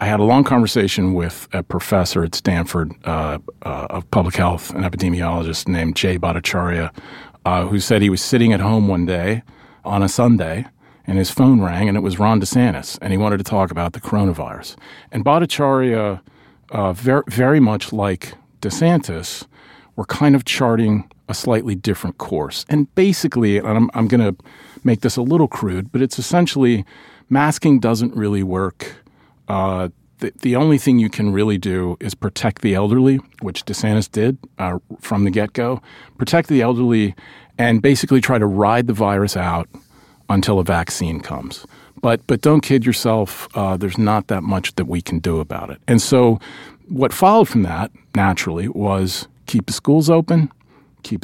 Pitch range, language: 95-125 Hz, English